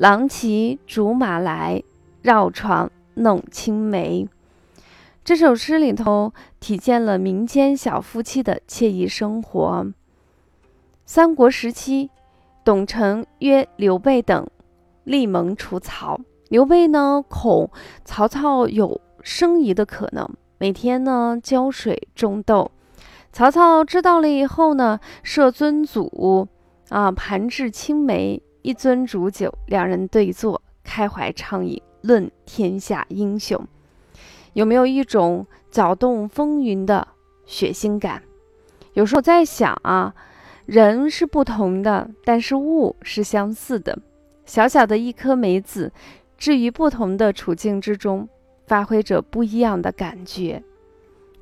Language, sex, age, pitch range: Chinese, female, 20-39, 195-270 Hz